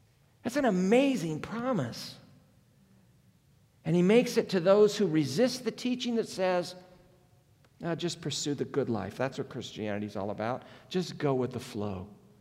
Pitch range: 125-170 Hz